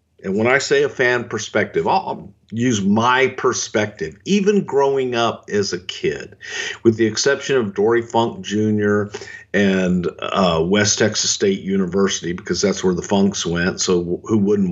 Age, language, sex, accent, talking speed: 50-69, English, male, American, 165 wpm